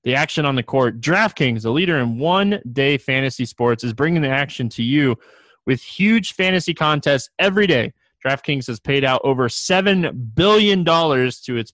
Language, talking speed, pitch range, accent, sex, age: English, 170 wpm, 125-155 Hz, American, male, 20-39